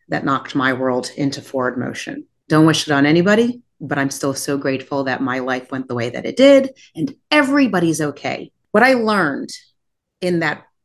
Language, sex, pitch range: English, female, 150-215 Hz